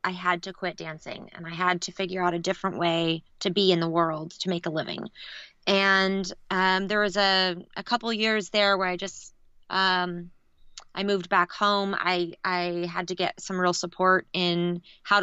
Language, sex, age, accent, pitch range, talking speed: English, female, 20-39, American, 175-195 Hz, 195 wpm